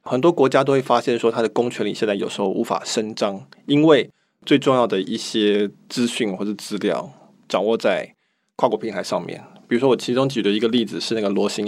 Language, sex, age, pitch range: Chinese, male, 20-39, 110-145 Hz